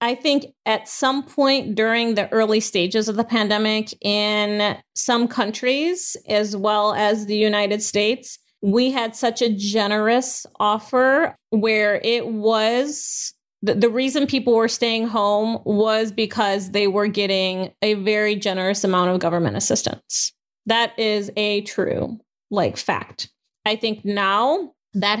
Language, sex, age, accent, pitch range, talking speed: English, female, 30-49, American, 195-230 Hz, 140 wpm